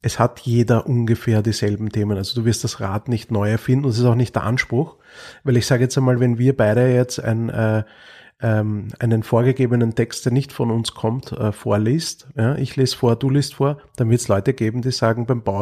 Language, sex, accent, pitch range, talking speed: German, male, Austrian, 115-130 Hz, 210 wpm